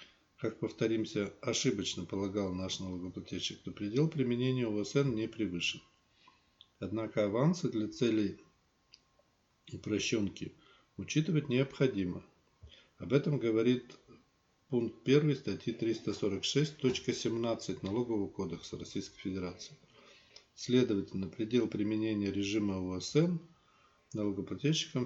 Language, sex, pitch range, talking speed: Russian, male, 100-130 Hz, 85 wpm